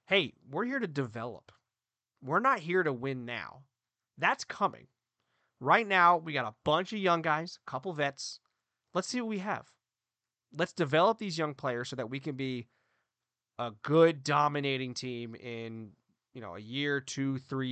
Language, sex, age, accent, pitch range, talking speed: English, male, 30-49, American, 125-160 Hz, 175 wpm